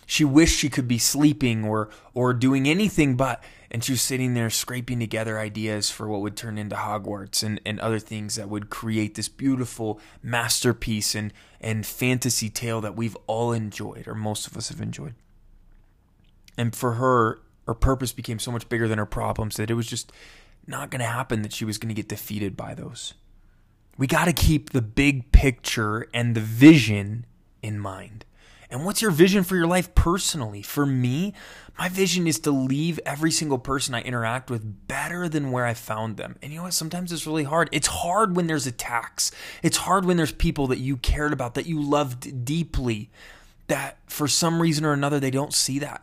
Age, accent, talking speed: 20-39, American, 200 wpm